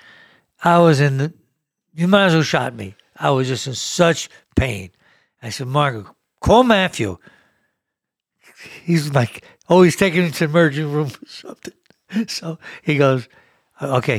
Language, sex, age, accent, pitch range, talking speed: English, male, 60-79, American, 130-165 Hz, 155 wpm